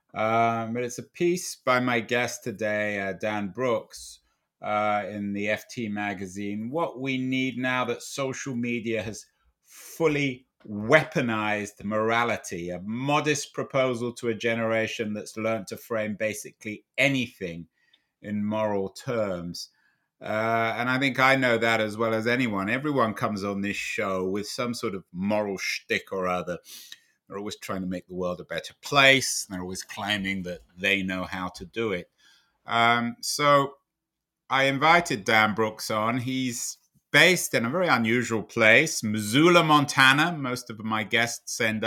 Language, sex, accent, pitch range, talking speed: English, male, British, 105-130 Hz, 155 wpm